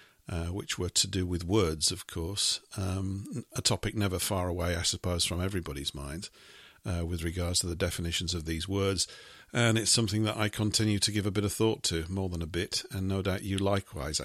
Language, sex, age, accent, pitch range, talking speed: English, male, 50-69, British, 90-110 Hz, 215 wpm